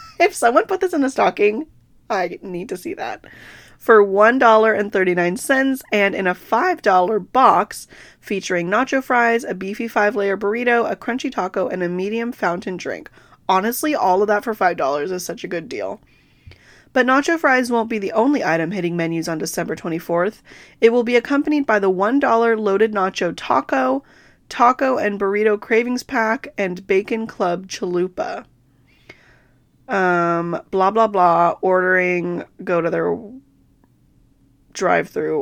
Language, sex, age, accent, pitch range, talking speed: English, female, 20-39, American, 180-245 Hz, 145 wpm